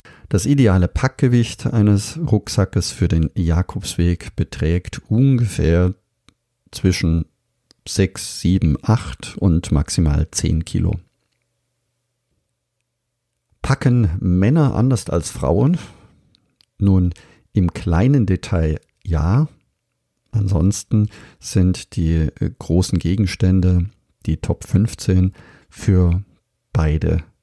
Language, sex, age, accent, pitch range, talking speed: German, male, 50-69, German, 85-110 Hz, 85 wpm